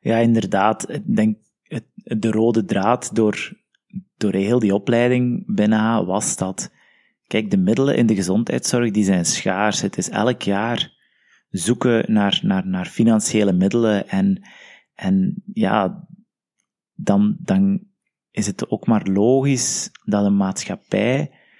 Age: 20-39